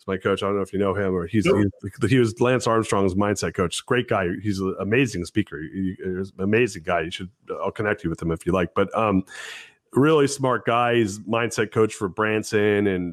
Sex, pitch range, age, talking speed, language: male, 95-110 Hz, 30-49, 225 wpm, English